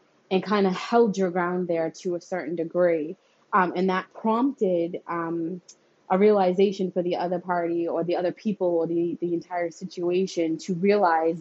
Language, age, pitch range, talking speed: English, 20-39, 175-210 Hz, 175 wpm